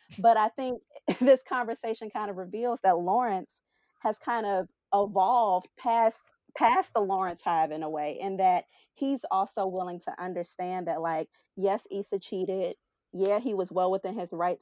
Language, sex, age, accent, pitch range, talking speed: English, female, 30-49, American, 175-225 Hz, 170 wpm